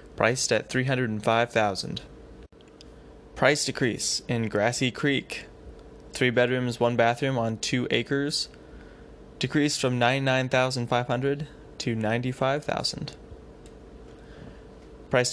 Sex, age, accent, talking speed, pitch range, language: male, 10-29, American, 120 wpm, 115-135 Hz, English